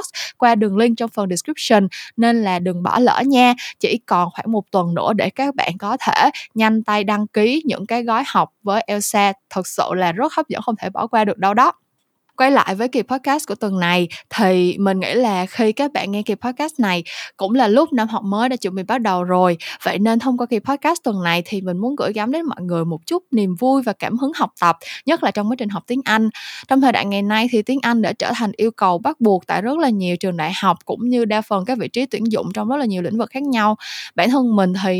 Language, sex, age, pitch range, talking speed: Vietnamese, female, 10-29, 195-250 Hz, 260 wpm